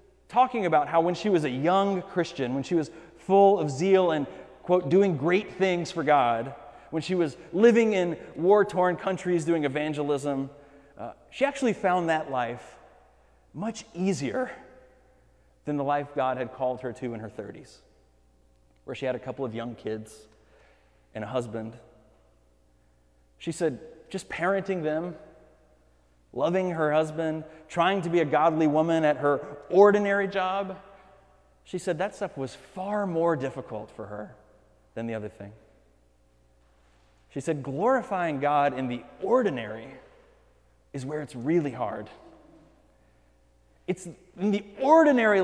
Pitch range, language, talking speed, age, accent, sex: 125-185 Hz, English, 145 wpm, 30-49, American, male